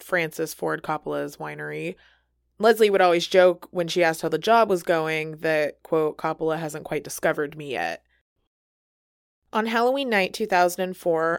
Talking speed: 150 wpm